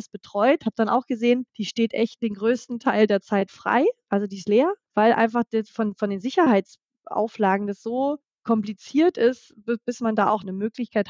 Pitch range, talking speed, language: 195-235 Hz, 185 wpm, German